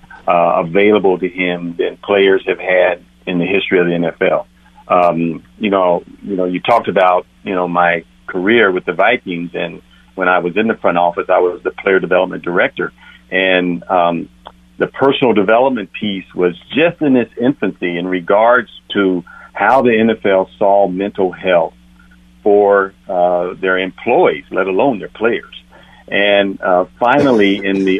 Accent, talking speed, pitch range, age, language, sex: American, 165 wpm, 90-105 Hz, 50-69, English, male